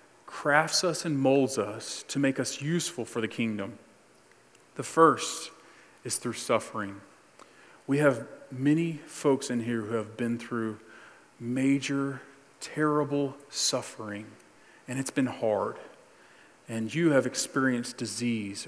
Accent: American